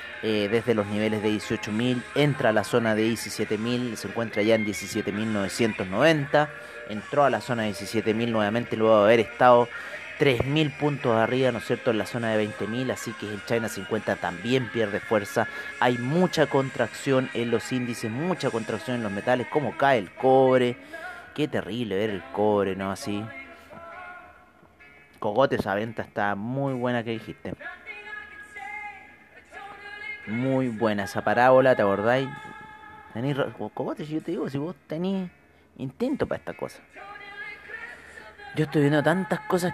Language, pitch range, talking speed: Spanish, 105-140 Hz, 150 wpm